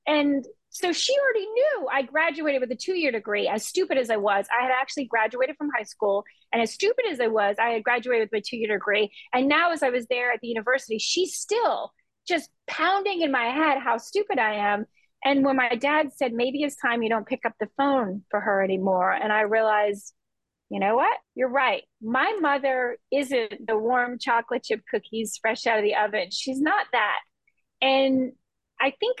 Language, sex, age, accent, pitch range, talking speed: English, female, 30-49, American, 230-295 Hz, 205 wpm